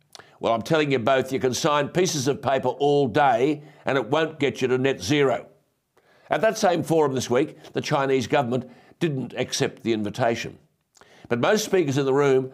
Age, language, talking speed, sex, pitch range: 60-79, English, 190 wpm, male, 140-180 Hz